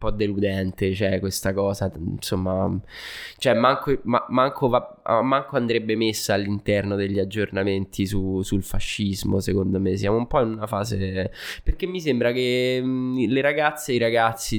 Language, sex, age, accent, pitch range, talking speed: Italian, male, 20-39, native, 100-125 Hz, 155 wpm